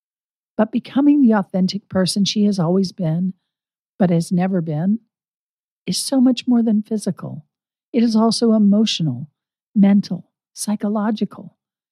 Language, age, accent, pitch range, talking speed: English, 50-69, American, 175-220 Hz, 125 wpm